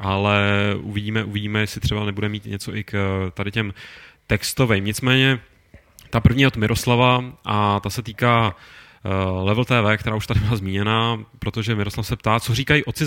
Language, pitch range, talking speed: Czech, 100-120 Hz, 165 wpm